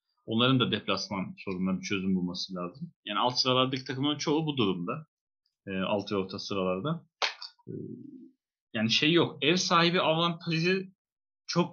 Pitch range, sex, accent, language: 110-155 Hz, male, native, Turkish